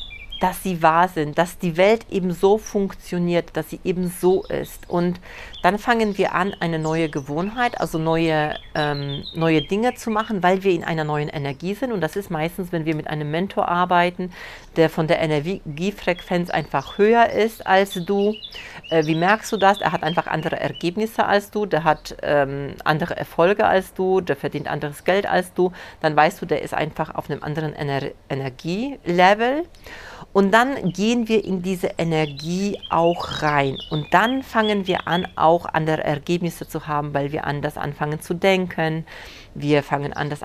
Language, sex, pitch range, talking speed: German, female, 155-195 Hz, 180 wpm